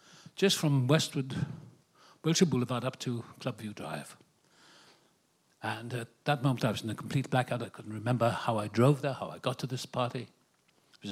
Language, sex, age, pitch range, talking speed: English, male, 60-79, 110-140 Hz, 185 wpm